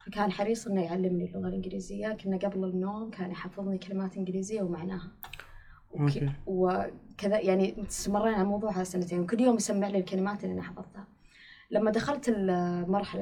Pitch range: 180-205 Hz